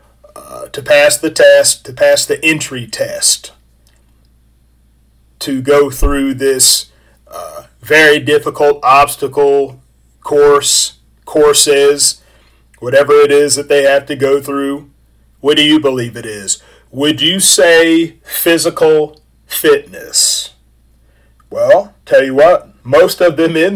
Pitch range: 115-165 Hz